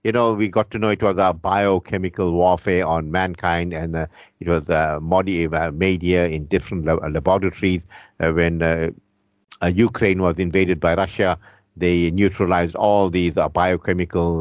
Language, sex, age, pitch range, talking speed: English, male, 50-69, 90-115 Hz, 150 wpm